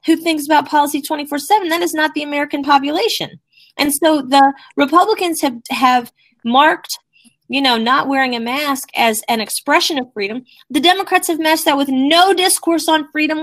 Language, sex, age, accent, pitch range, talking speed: English, female, 30-49, American, 225-305 Hz, 175 wpm